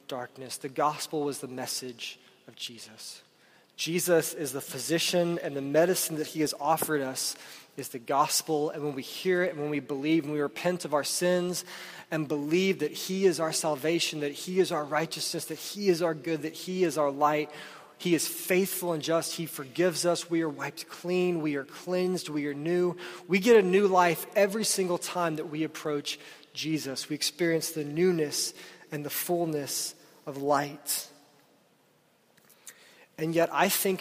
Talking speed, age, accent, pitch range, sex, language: 185 wpm, 20-39, American, 145-175 Hz, male, English